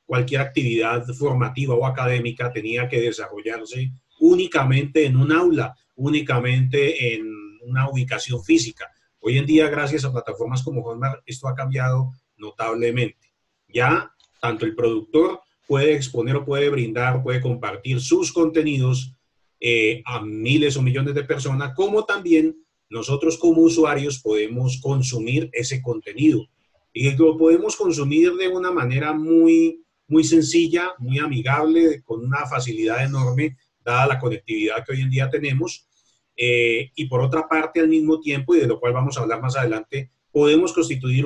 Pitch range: 125-160 Hz